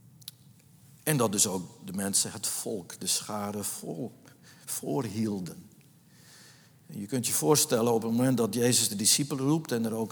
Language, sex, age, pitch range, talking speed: Dutch, male, 60-79, 110-145 Hz, 165 wpm